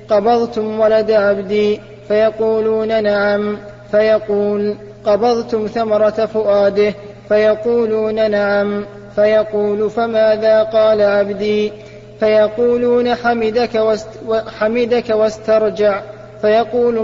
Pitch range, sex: 210-230 Hz, male